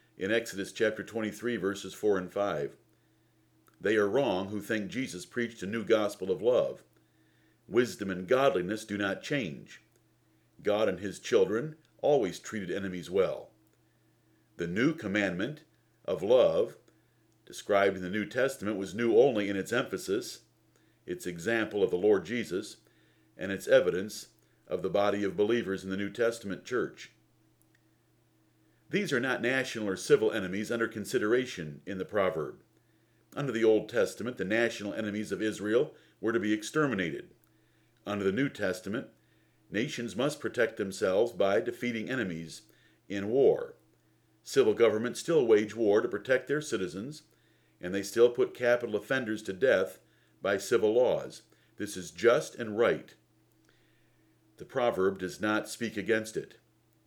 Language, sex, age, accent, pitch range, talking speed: English, male, 60-79, American, 100-125 Hz, 145 wpm